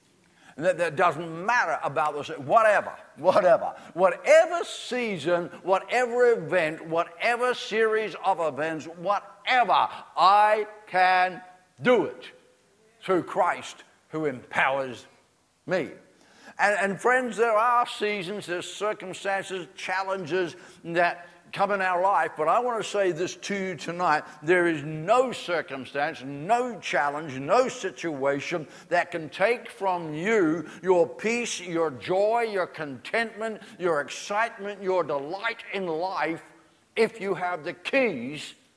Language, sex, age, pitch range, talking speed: English, male, 60-79, 160-210 Hz, 120 wpm